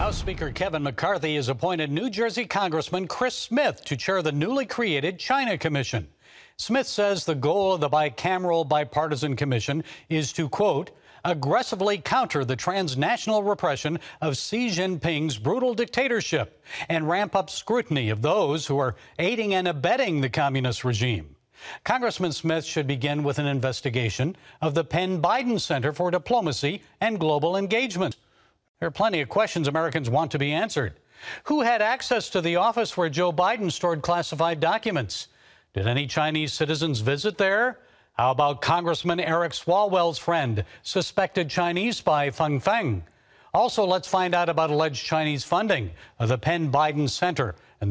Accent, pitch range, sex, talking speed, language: American, 140-190 Hz, male, 155 wpm, English